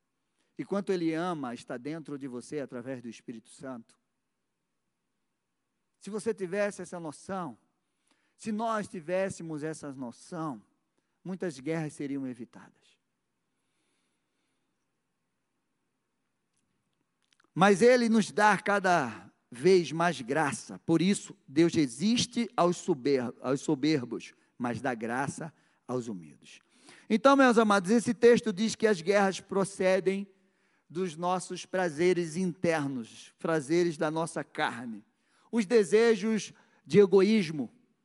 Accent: Brazilian